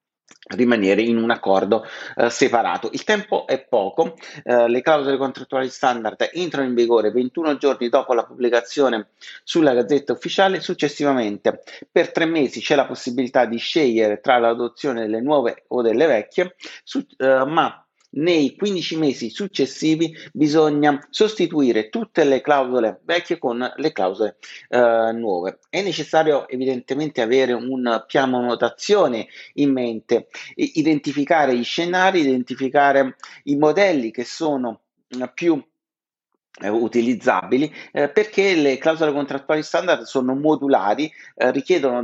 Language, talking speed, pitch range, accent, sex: Italian, 130 wpm, 125-155 Hz, native, male